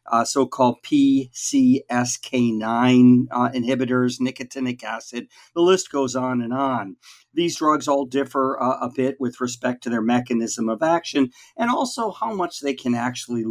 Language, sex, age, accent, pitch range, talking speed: English, male, 50-69, American, 125-165 Hz, 150 wpm